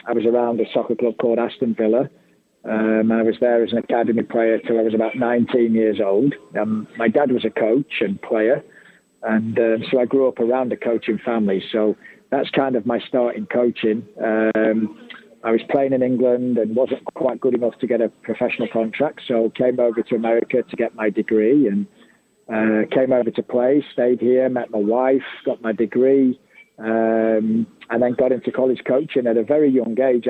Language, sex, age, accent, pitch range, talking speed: English, male, 40-59, British, 110-125 Hz, 200 wpm